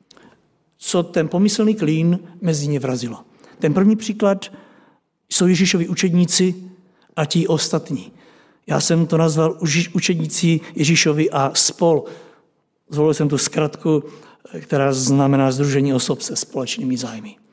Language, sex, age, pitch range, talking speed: Czech, male, 60-79, 155-200 Hz, 120 wpm